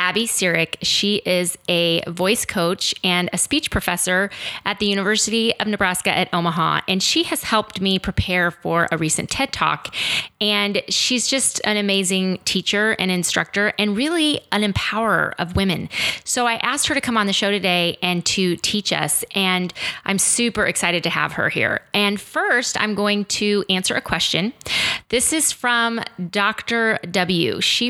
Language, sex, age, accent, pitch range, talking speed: English, female, 30-49, American, 180-225 Hz, 170 wpm